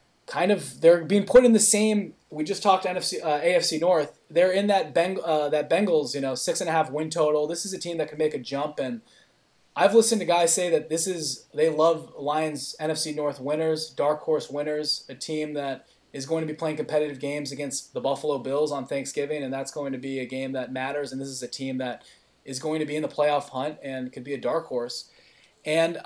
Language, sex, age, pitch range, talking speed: English, male, 20-39, 135-160 Hz, 235 wpm